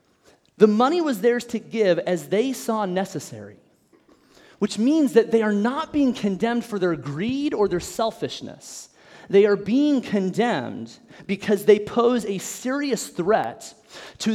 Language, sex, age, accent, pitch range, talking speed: English, male, 30-49, American, 190-250 Hz, 145 wpm